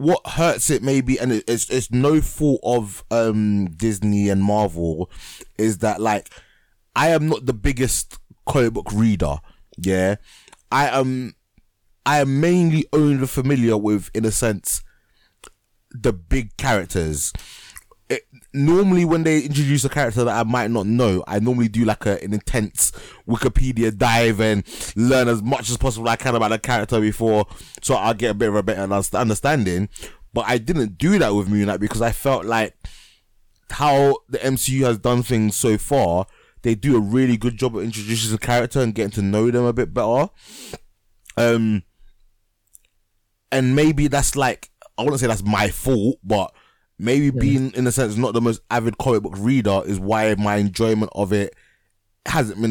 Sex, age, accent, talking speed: male, 20-39, British, 175 wpm